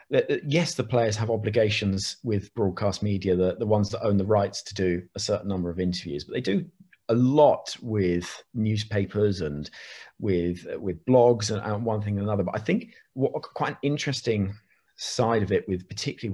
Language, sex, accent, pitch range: English, male, British, 95-125 Hz